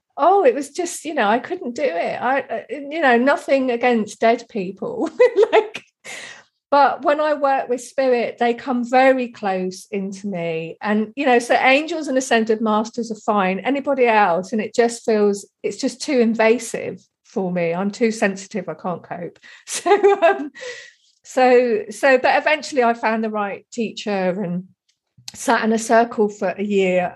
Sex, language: female, English